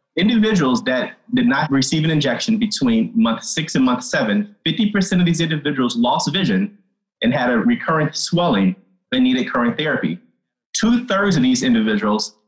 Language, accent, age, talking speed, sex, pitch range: English, American, 30-49, 155 wpm, male, 155-235 Hz